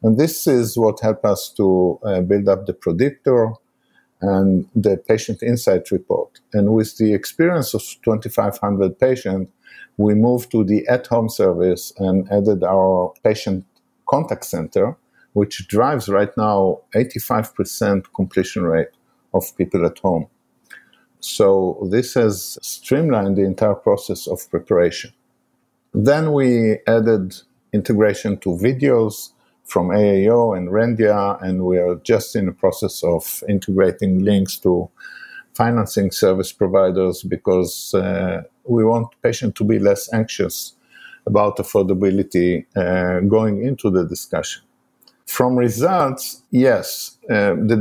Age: 50-69